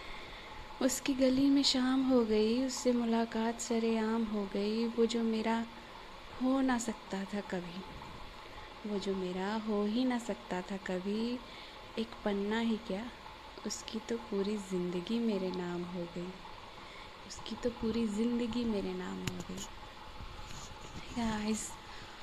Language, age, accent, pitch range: Hindi, 20-39, native, 195-225 Hz